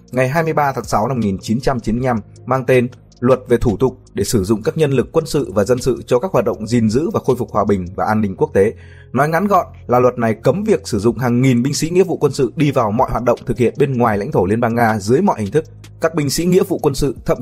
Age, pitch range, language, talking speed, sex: 20-39, 115-155 Hz, Vietnamese, 285 wpm, male